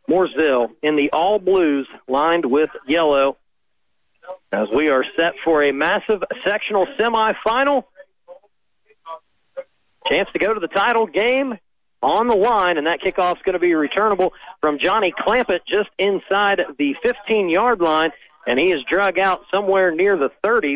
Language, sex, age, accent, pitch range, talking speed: English, male, 40-59, American, 150-190 Hz, 145 wpm